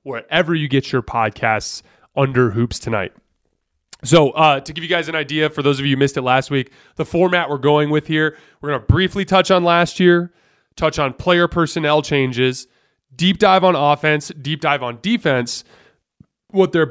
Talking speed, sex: 190 wpm, male